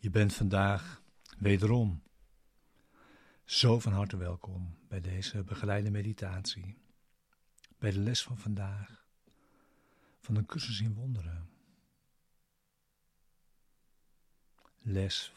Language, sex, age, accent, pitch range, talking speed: Dutch, male, 50-69, Dutch, 95-115 Hz, 90 wpm